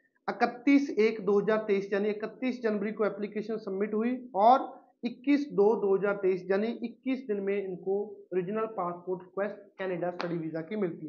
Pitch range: 205-250 Hz